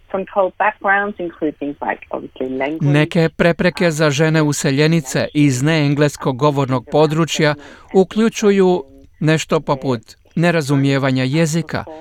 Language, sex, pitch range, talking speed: Croatian, male, 135-160 Hz, 70 wpm